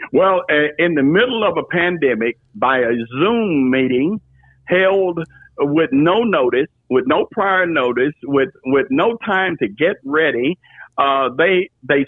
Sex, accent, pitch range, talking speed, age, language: male, American, 125-175 Hz, 145 wpm, 60-79, English